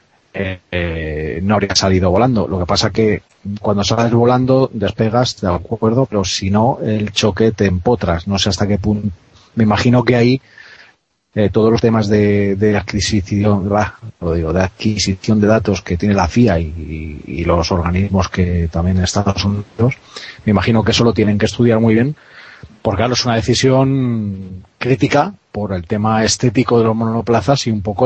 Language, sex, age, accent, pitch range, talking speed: Spanish, male, 30-49, Spanish, 95-115 Hz, 180 wpm